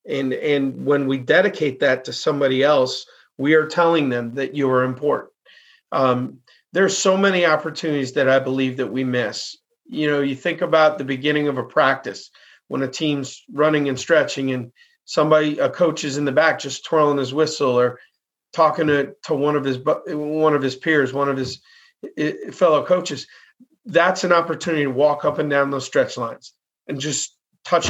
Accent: American